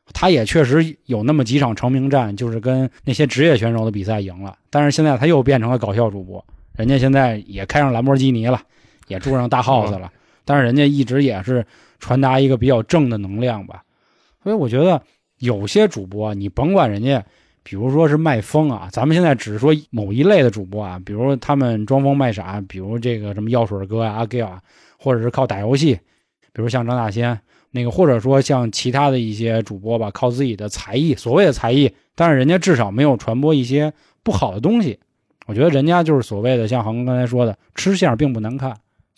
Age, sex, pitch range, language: 20-39, male, 110-150 Hz, Chinese